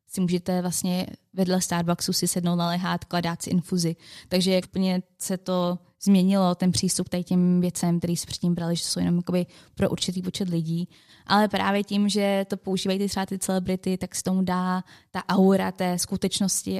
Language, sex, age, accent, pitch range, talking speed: Czech, female, 20-39, native, 180-225 Hz, 175 wpm